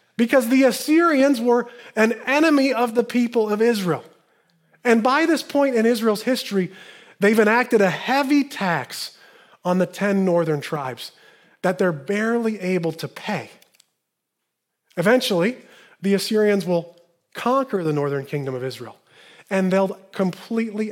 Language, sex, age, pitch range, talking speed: English, male, 30-49, 165-245 Hz, 135 wpm